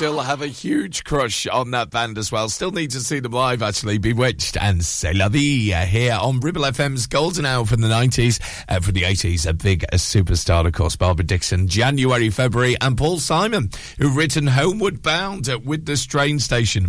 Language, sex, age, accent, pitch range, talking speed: English, male, 40-59, British, 95-130 Hz, 200 wpm